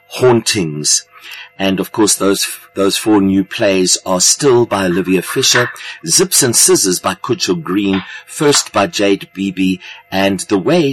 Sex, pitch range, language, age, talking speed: male, 95-135 Hz, English, 50-69, 150 wpm